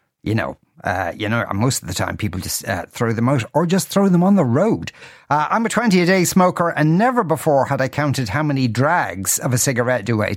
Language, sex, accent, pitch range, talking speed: English, male, Irish, 130-175 Hz, 235 wpm